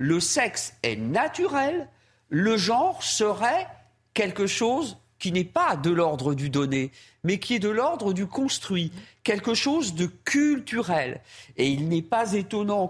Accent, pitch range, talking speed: French, 145-225 Hz, 150 wpm